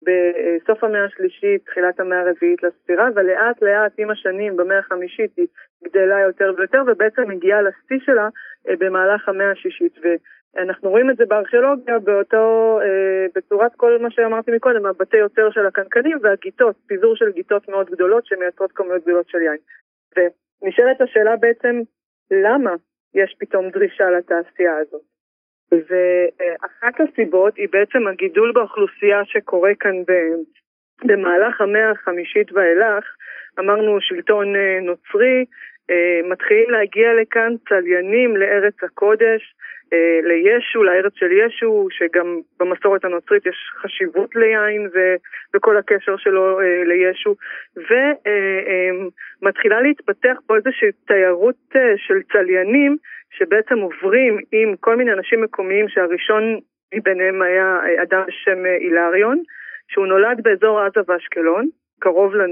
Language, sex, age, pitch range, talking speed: Hebrew, female, 30-49, 185-240 Hz, 115 wpm